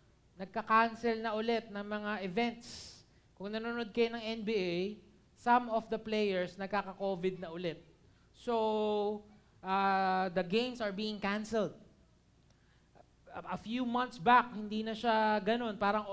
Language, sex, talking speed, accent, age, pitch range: Filipino, male, 125 wpm, native, 20-39, 185-230 Hz